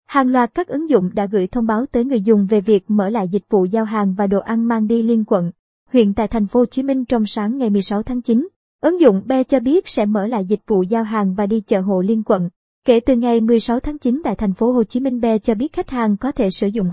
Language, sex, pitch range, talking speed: Vietnamese, male, 210-255 Hz, 280 wpm